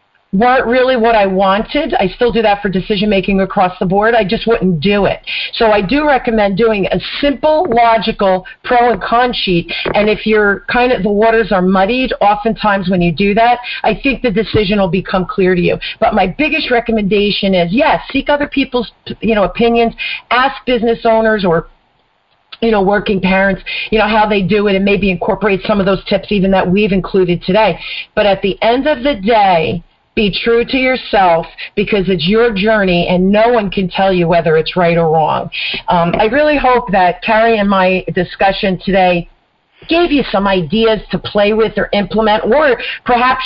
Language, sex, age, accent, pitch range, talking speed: English, female, 40-59, American, 190-235 Hz, 195 wpm